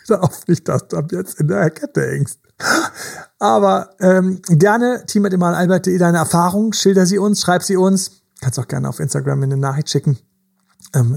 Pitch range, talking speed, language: 145-180 Hz, 175 wpm, German